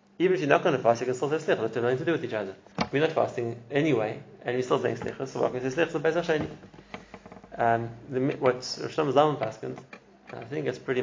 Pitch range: 115-140 Hz